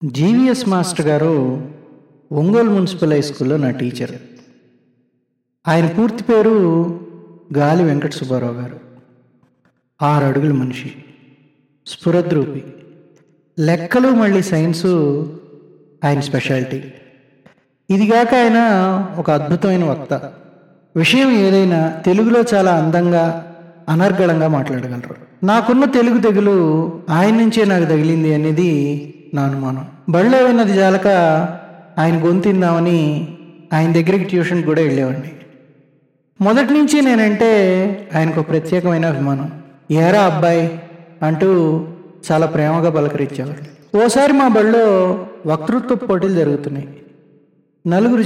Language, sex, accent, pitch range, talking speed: Telugu, male, native, 145-190 Hz, 95 wpm